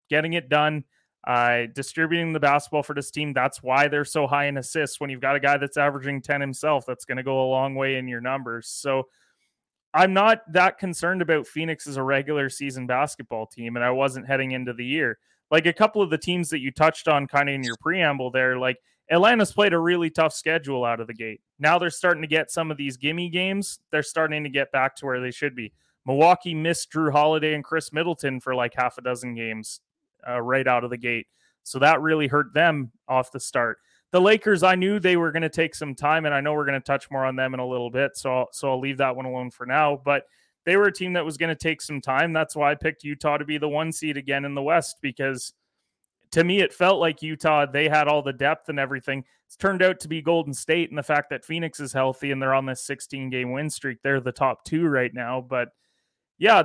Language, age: English, 20-39